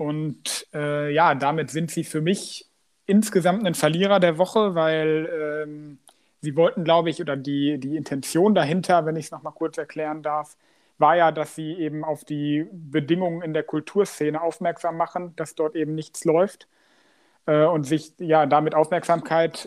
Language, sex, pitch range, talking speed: German, male, 150-175 Hz, 170 wpm